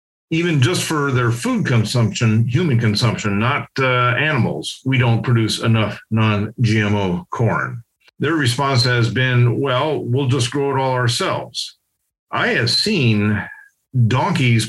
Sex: male